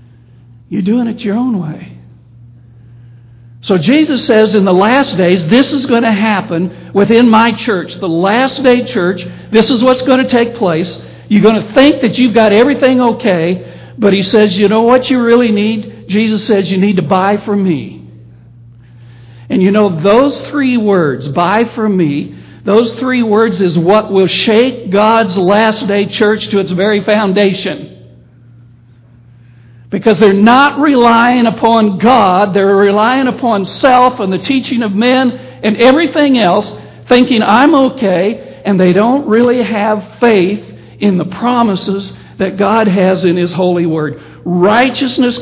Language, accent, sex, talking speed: English, American, male, 160 wpm